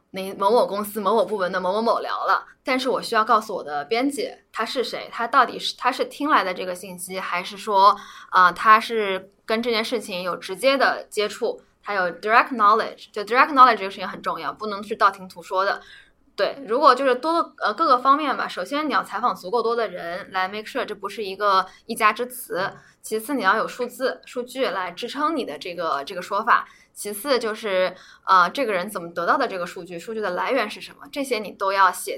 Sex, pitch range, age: female, 190-250 Hz, 10-29